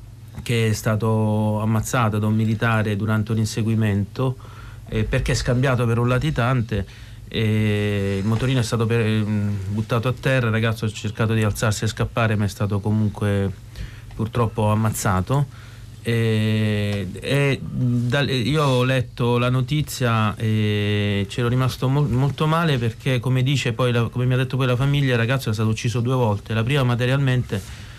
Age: 30-49